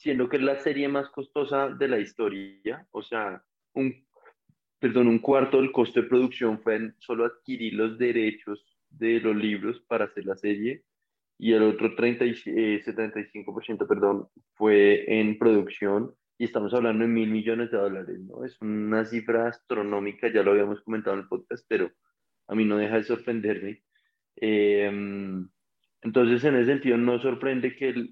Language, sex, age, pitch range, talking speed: Spanish, male, 20-39, 105-125 Hz, 170 wpm